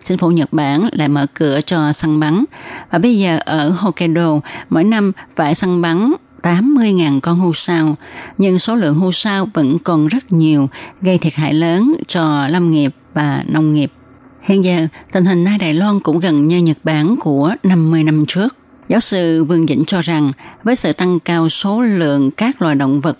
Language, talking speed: Vietnamese, 195 wpm